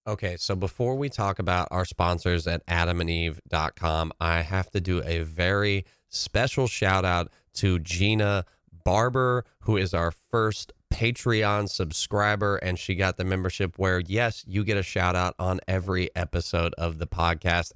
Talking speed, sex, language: 155 wpm, male, English